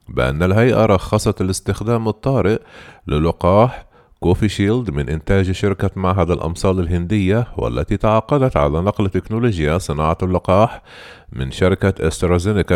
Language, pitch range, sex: Arabic, 85-110 Hz, male